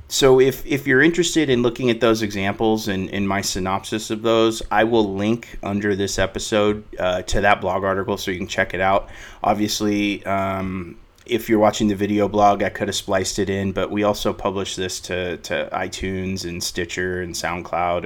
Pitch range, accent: 95-110 Hz, American